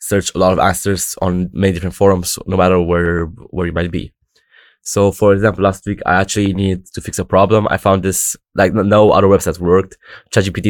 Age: 20-39